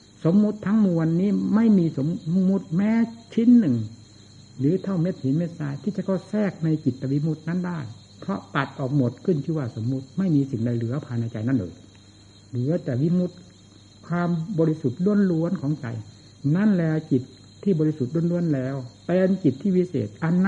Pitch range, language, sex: 120-170 Hz, Thai, male